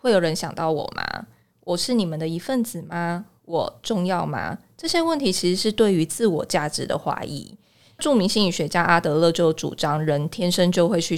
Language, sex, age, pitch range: Chinese, female, 20-39, 165-220 Hz